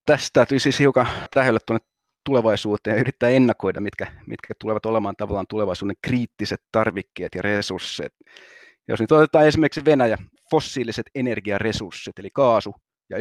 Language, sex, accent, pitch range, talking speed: Finnish, male, native, 105-125 Hz, 130 wpm